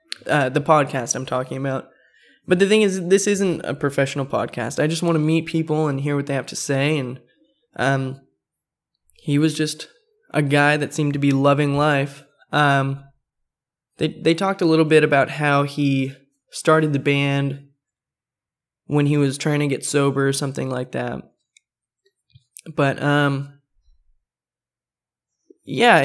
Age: 10-29